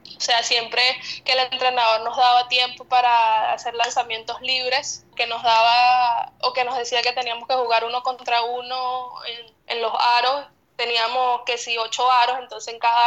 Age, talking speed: 10-29, 185 wpm